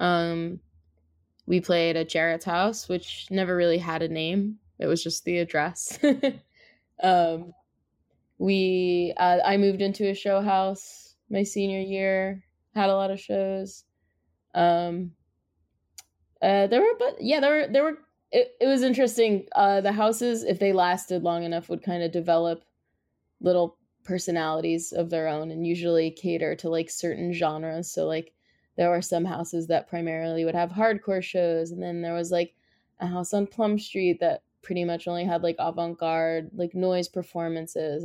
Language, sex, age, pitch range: English, female, 20-39, 165-190 Hz